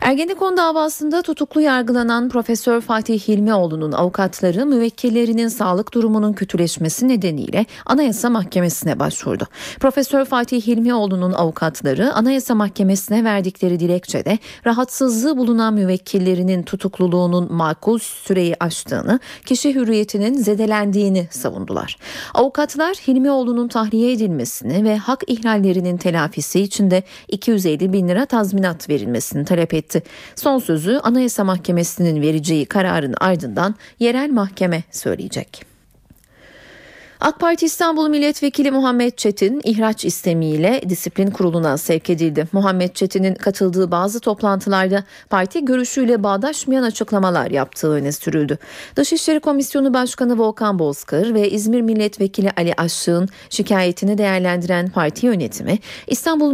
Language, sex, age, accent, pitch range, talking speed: Turkish, female, 30-49, native, 180-245 Hz, 105 wpm